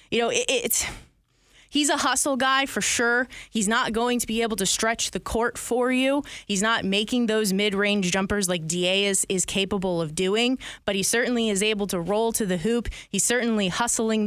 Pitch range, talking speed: 195-240 Hz, 200 wpm